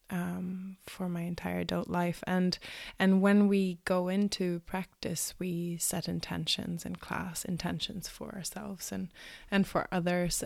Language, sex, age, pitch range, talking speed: English, female, 20-39, 170-185 Hz, 145 wpm